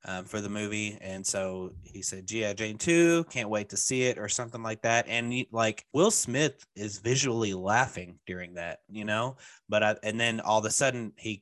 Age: 20-39